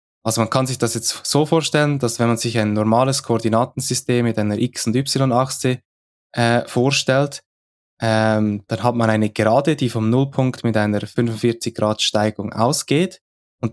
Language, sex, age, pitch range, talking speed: German, male, 20-39, 110-135 Hz, 155 wpm